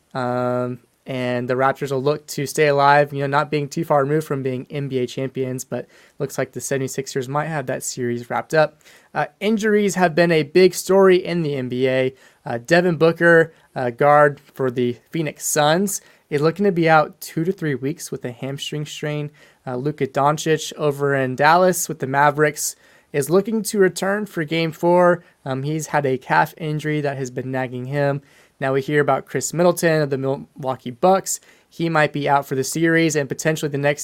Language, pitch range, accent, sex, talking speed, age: English, 135-160 Hz, American, male, 195 wpm, 20-39